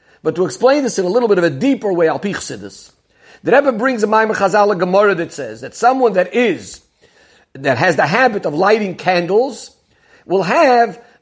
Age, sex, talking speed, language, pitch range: 50-69, male, 200 wpm, English, 185-245 Hz